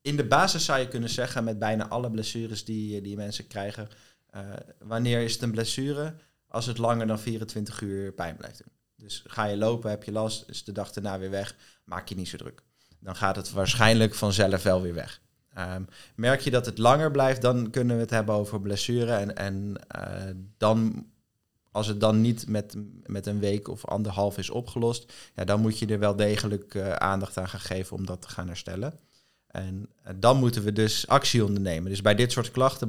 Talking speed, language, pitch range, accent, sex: 210 wpm, Dutch, 100-120 Hz, Dutch, male